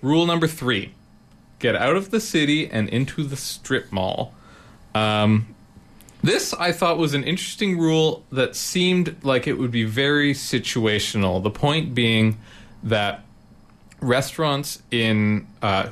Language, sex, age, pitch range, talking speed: English, male, 30-49, 100-145 Hz, 135 wpm